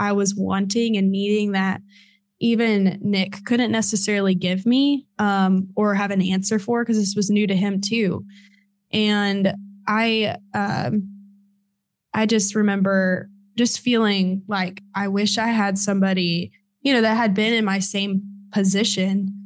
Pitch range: 195-210 Hz